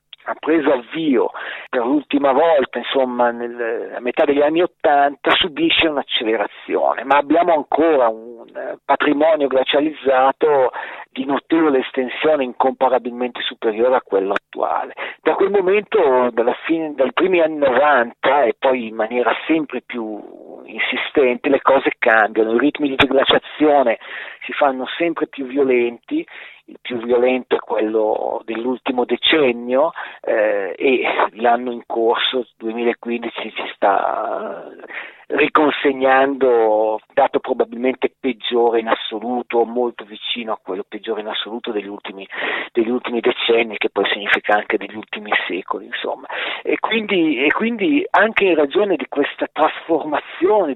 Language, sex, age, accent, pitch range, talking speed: Italian, male, 50-69, native, 120-155 Hz, 125 wpm